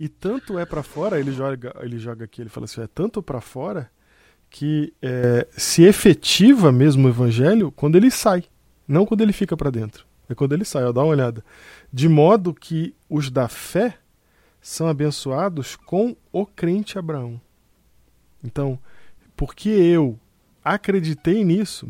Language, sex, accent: Portuguese, male, Brazilian